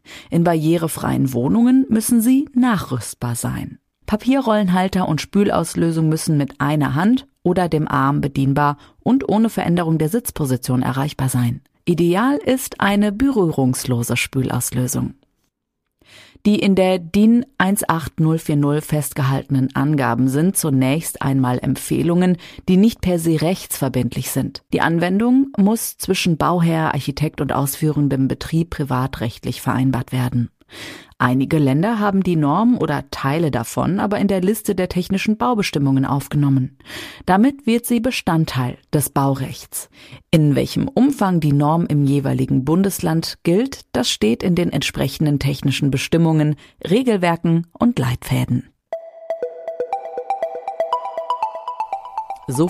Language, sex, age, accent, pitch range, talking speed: German, female, 40-59, German, 135-205 Hz, 115 wpm